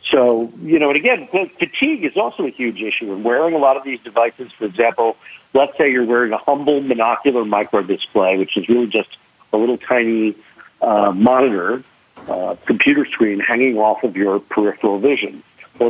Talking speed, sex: 180 wpm, male